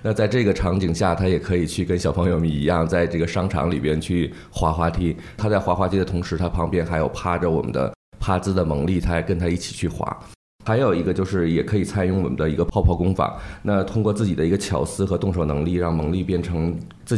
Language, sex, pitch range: Chinese, male, 85-95 Hz